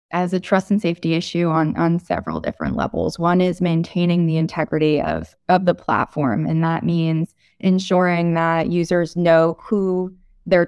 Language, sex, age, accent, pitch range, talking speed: English, female, 20-39, American, 155-185 Hz, 165 wpm